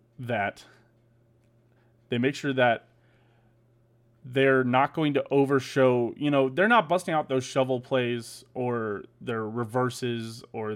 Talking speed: 130 wpm